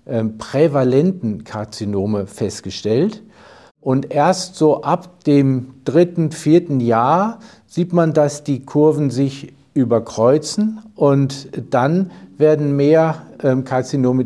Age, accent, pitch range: 50-69, German, 115-150 Hz